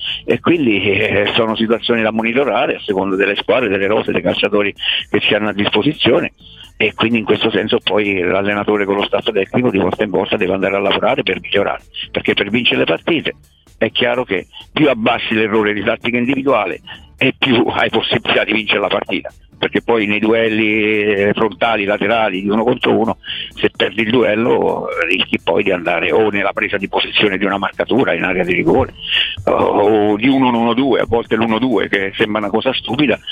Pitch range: 100-115 Hz